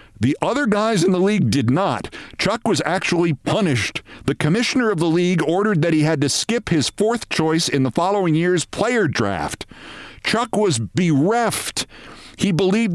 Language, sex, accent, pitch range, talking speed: English, male, American, 110-155 Hz, 170 wpm